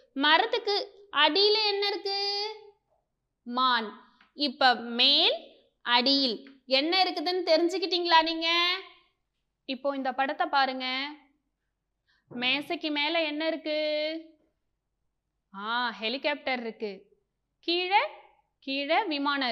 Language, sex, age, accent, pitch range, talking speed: Tamil, female, 20-39, native, 265-345 Hz, 35 wpm